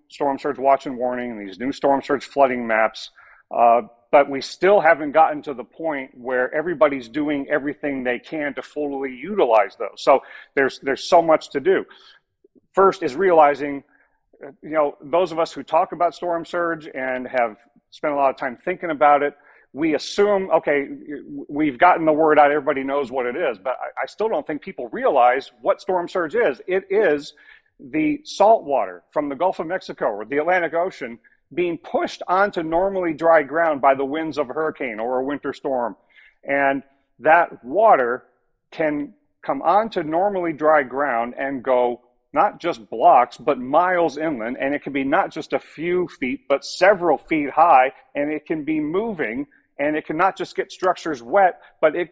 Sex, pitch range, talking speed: male, 140-180 Hz, 185 wpm